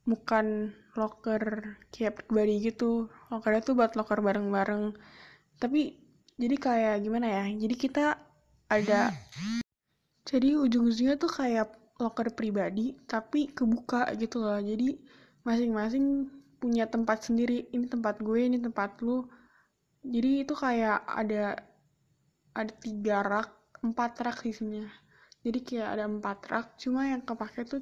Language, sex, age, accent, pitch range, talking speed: Indonesian, female, 10-29, native, 210-245 Hz, 125 wpm